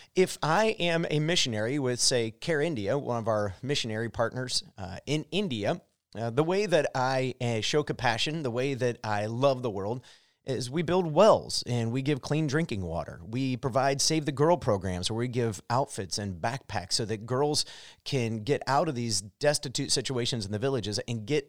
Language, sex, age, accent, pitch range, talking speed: English, male, 30-49, American, 110-150 Hz, 195 wpm